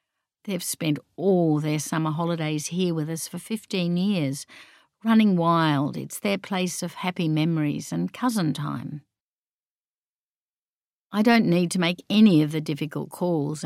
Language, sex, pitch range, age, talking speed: English, female, 155-185 Hz, 50-69, 145 wpm